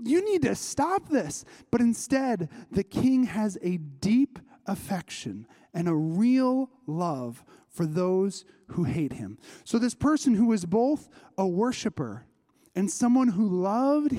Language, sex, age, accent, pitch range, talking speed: English, male, 30-49, American, 175-250 Hz, 145 wpm